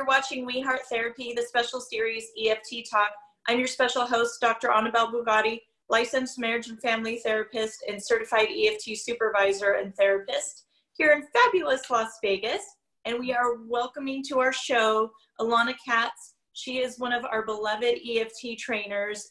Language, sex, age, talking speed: English, female, 30-49, 150 wpm